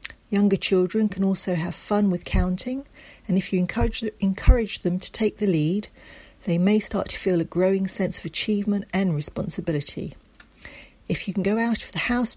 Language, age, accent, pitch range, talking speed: English, 40-59, British, 170-210 Hz, 180 wpm